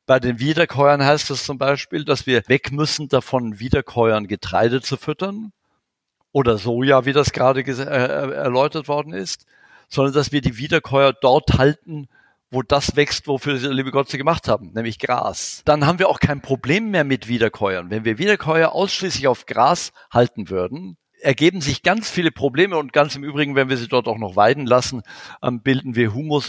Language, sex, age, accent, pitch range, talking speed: German, male, 50-69, German, 120-145 Hz, 180 wpm